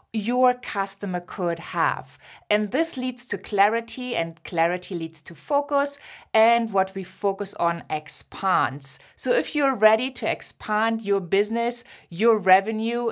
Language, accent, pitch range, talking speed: English, German, 185-245 Hz, 135 wpm